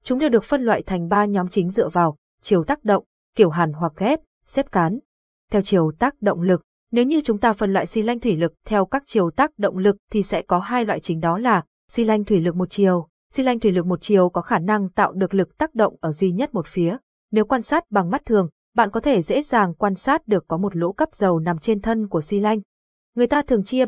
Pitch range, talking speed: 180-235 Hz, 260 wpm